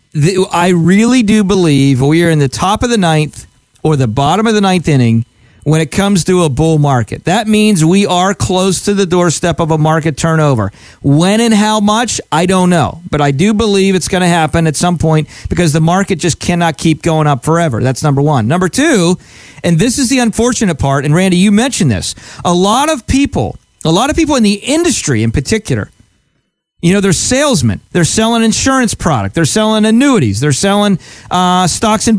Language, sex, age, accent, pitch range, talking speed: English, male, 40-59, American, 155-215 Hz, 205 wpm